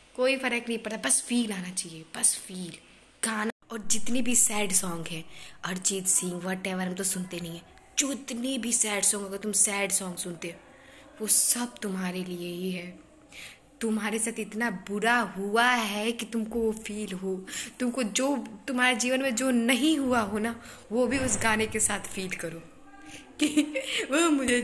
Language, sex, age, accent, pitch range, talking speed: Hindi, female, 20-39, native, 205-275 Hz, 165 wpm